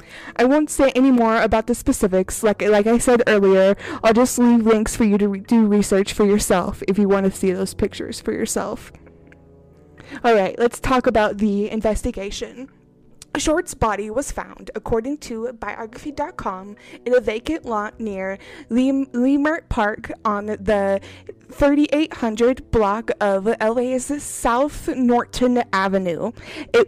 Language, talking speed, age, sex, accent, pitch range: English, 145 wpm, 20-39, female, American, 205-250 Hz